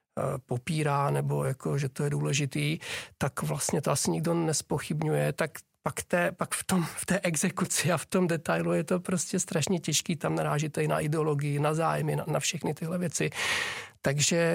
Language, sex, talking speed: Czech, male, 180 wpm